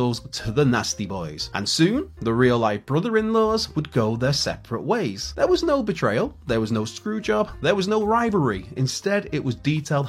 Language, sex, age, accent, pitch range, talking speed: English, male, 30-49, British, 115-180 Hz, 185 wpm